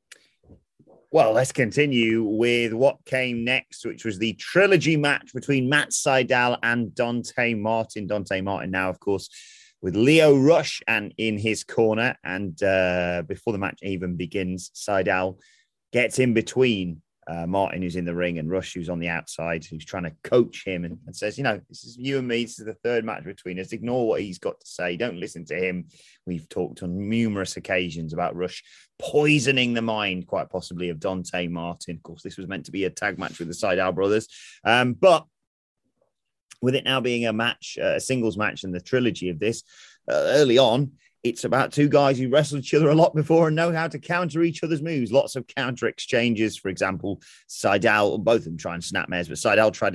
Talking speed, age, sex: 205 wpm, 30-49, male